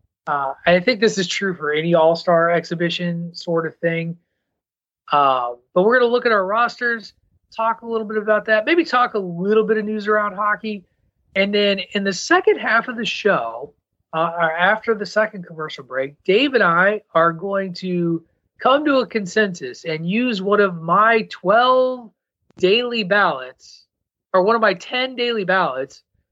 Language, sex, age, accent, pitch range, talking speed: English, male, 30-49, American, 165-220 Hz, 175 wpm